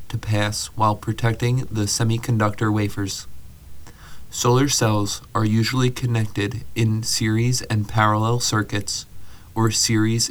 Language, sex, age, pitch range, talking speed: English, male, 30-49, 105-120 Hz, 110 wpm